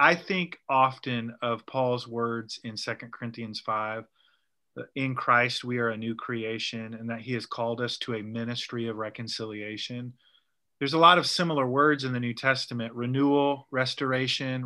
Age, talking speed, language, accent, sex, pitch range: 30-49, 170 wpm, English, American, male, 115-140 Hz